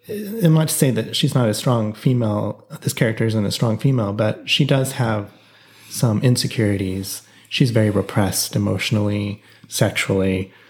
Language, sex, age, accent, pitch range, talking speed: English, male, 30-49, American, 110-135 Hz, 150 wpm